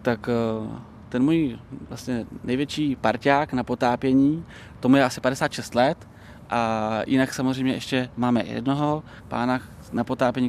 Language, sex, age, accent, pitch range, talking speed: Czech, male, 20-39, native, 120-135 Hz, 125 wpm